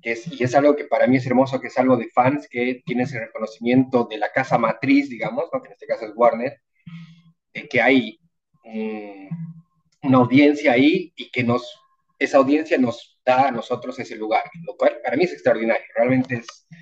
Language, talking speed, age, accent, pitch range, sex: Spanish, 205 wpm, 30-49, Mexican, 120-165 Hz, male